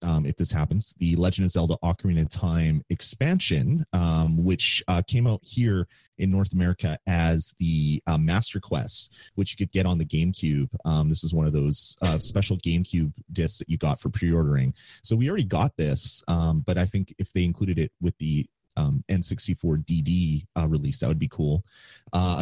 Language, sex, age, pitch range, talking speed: English, male, 30-49, 80-100 Hz, 190 wpm